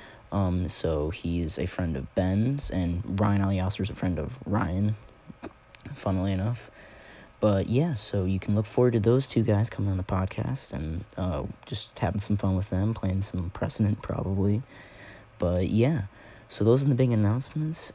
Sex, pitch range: male, 95-110 Hz